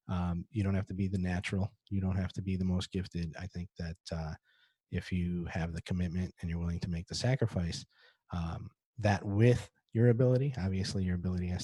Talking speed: 210 wpm